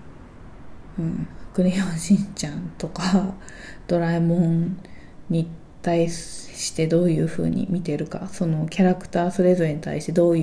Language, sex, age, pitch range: Japanese, female, 20-39, 160-185 Hz